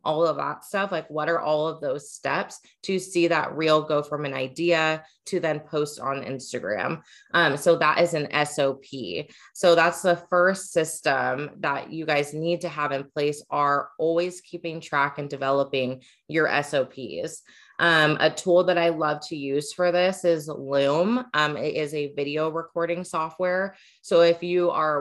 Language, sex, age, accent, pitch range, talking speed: English, female, 20-39, American, 145-175 Hz, 180 wpm